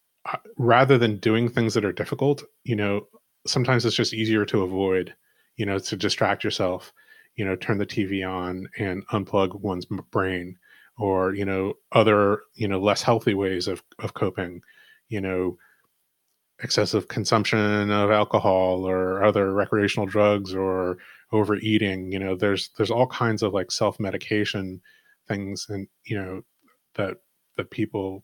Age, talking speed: 30-49, 150 wpm